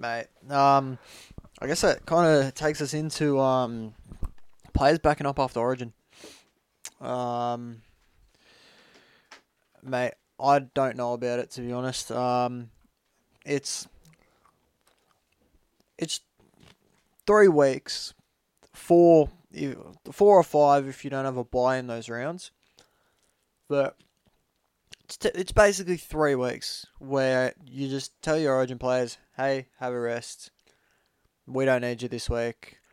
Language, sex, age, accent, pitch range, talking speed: English, male, 20-39, Australian, 120-155 Hz, 120 wpm